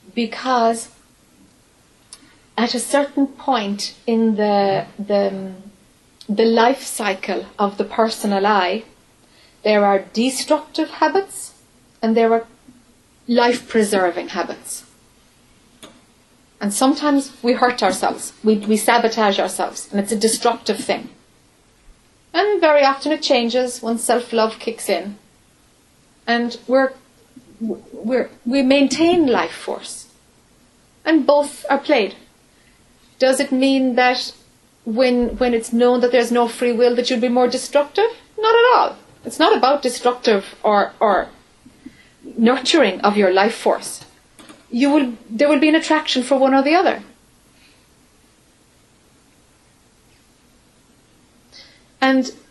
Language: English